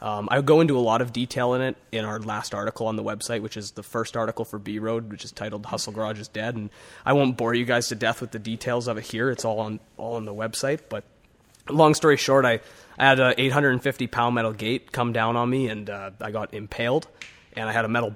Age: 20-39